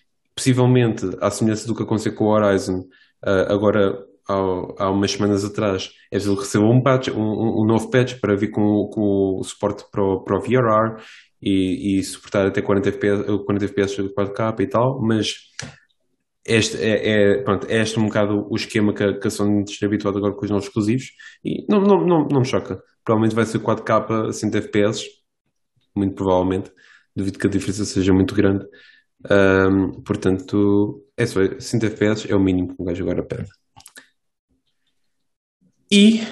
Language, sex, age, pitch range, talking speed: English, male, 20-39, 100-125 Hz, 170 wpm